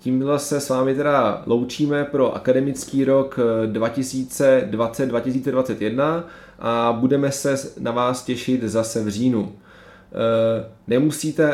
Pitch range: 115-135 Hz